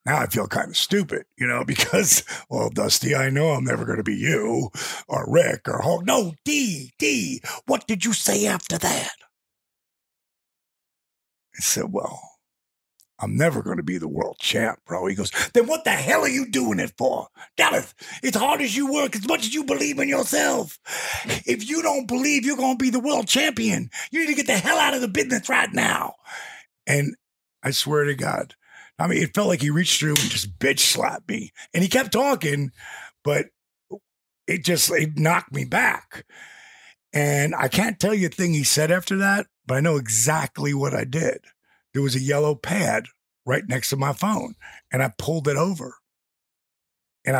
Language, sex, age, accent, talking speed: English, male, 50-69, American, 195 wpm